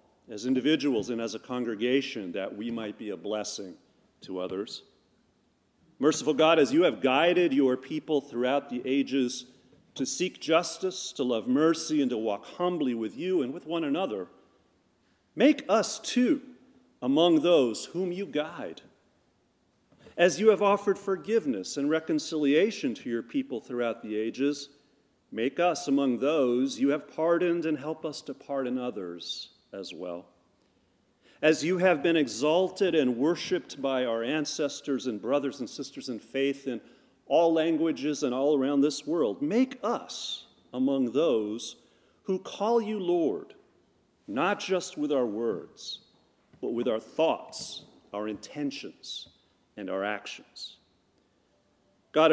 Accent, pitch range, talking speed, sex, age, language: American, 130-185 Hz, 140 wpm, male, 40-59, English